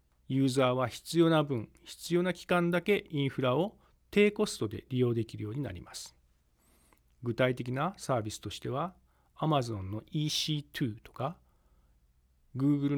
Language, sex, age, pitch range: Japanese, male, 40-59, 105-165 Hz